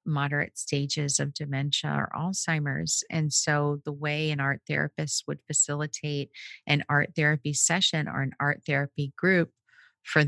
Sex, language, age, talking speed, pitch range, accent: female, English, 40-59, 145 wpm, 140-160 Hz, American